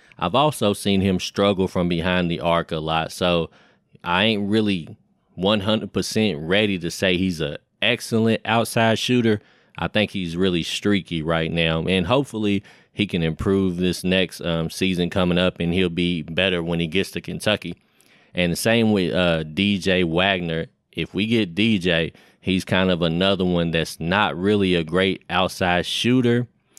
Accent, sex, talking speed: American, male, 165 wpm